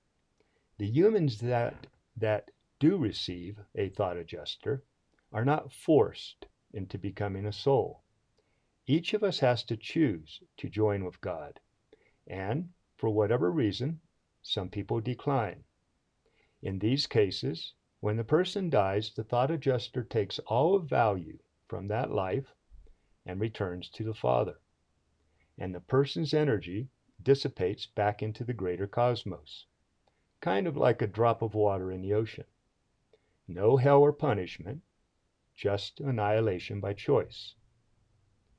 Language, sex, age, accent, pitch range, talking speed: English, male, 50-69, American, 105-125 Hz, 130 wpm